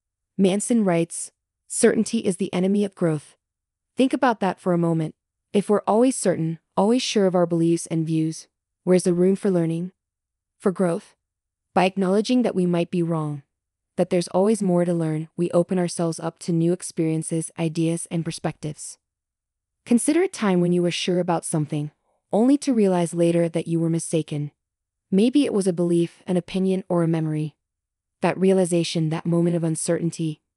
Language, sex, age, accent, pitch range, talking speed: English, female, 20-39, American, 160-190 Hz, 175 wpm